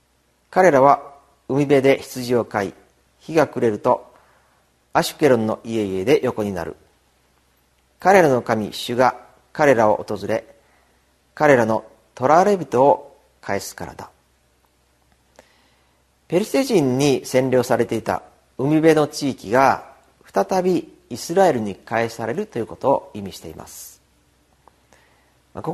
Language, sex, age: Japanese, male, 40-59